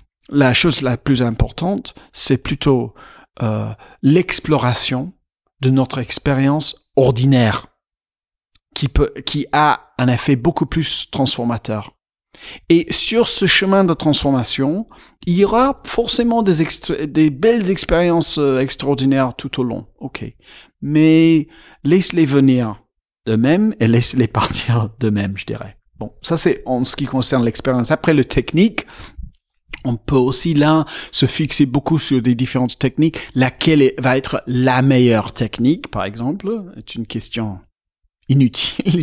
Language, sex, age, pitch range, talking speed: French, male, 40-59, 120-160 Hz, 135 wpm